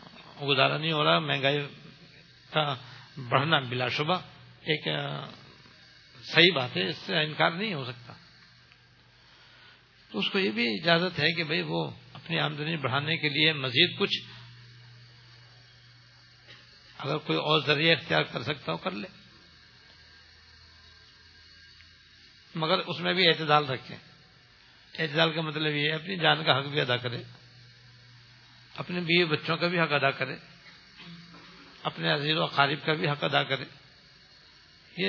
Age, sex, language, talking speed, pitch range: 60-79, male, English, 135 wpm, 125-170 Hz